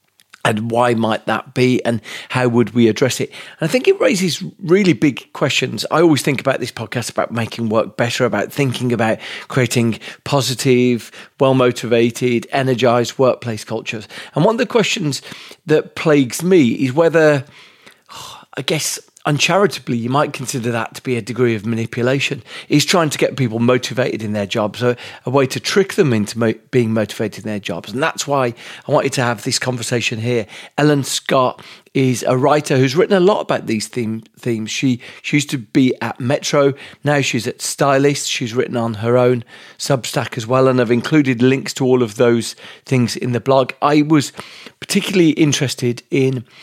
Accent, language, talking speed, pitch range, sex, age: British, English, 180 wpm, 120-145 Hz, male, 40-59